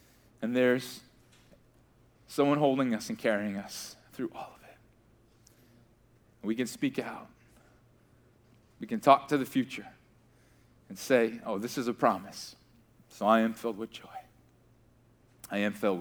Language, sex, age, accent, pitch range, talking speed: English, male, 40-59, American, 115-130 Hz, 140 wpm